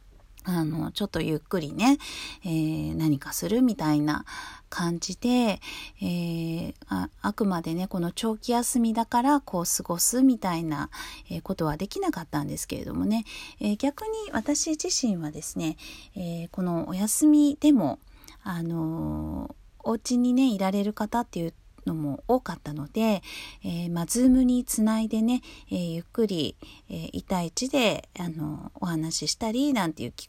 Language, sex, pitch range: Japanese, female, 165-235 Hz